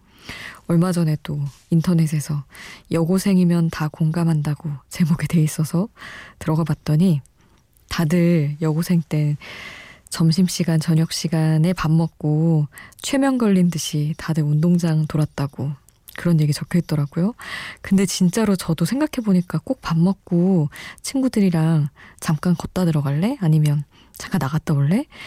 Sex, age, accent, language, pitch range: female, 20-39, native, Korean, 155-185 Hz